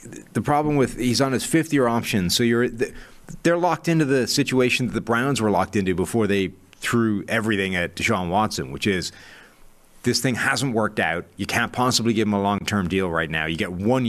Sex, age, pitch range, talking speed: male, 30-49, 100-125 Hz, 205 wpm